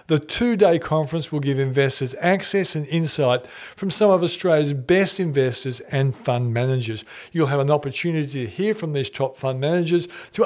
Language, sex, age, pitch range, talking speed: English, male, 50-69, 135-175 Hz, 170 wpm